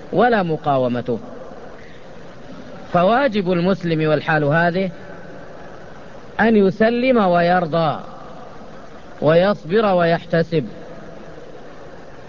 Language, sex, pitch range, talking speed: English, female, 170-215 Hz, 55 wpm